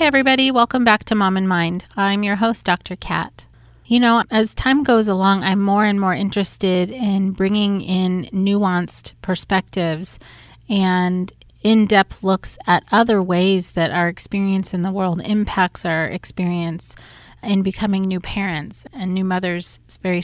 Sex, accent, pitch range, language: female, American, 180-205 Hz, English